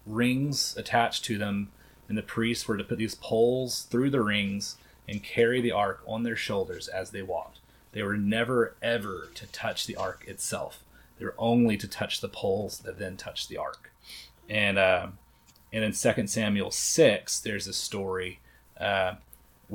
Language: English